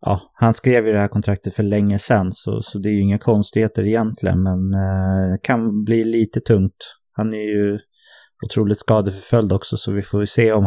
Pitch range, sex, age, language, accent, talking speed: 100-120 Hz, male, 30-49, English, Swedish, 210 wpm